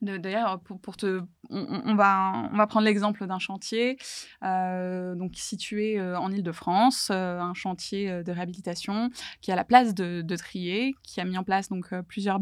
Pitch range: 185-215 Hz